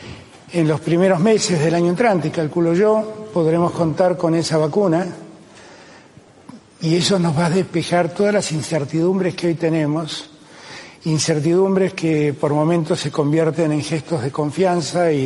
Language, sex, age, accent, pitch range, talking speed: Spanish, male, 60-79, Argentinian, 150-185 Hz, 145 wpm